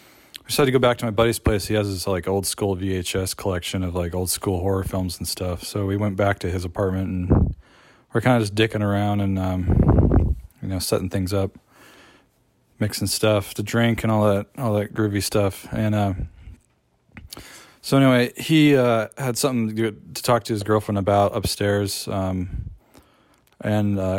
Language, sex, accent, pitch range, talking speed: English, male, American, 95-110 Hz, 190 wpm